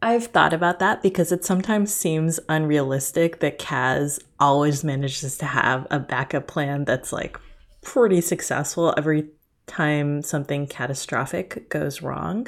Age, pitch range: 20-39, 140-175 Hz